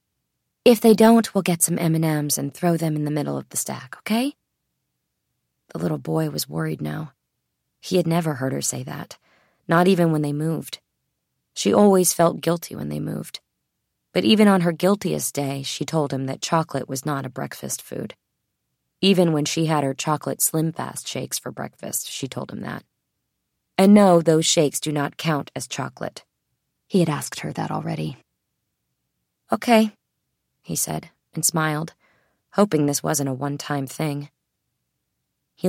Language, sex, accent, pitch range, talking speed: English, female, American, 135-170 Hz, 170 wpm